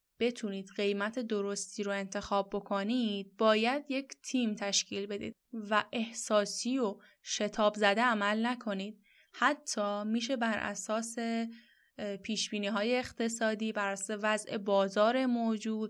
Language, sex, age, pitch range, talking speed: Persian, female, 10-29, 200-245 Hz, 110 wpm